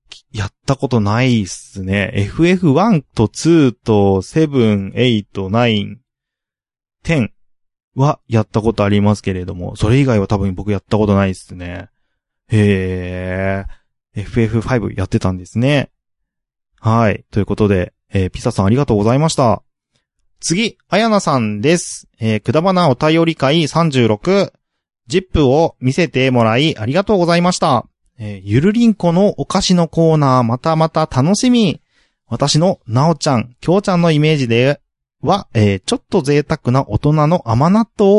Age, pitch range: 20-39, 105-165 Hz